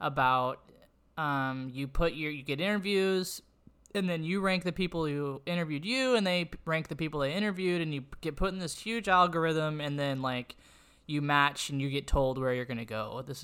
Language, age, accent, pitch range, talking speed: English, 20-39, American, 130-160 Hz, 210 wpm